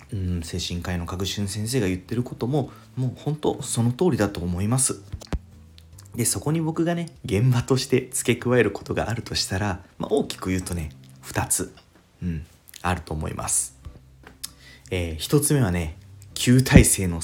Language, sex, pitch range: Japanese, male, 85-130 Hz